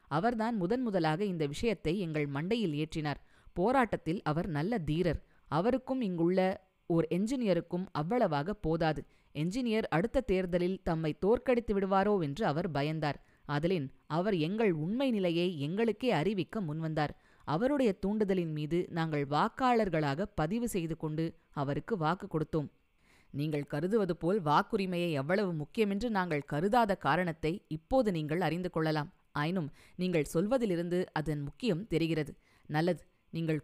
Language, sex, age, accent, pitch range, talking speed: Tamil, female, 20-39, native, 155-215 Hz, 120 wpm